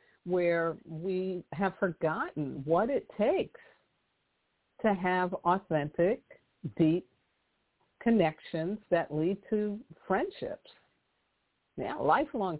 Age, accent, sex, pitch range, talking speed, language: 50-69, American, female, 145-195 Hz, 85 wpm, English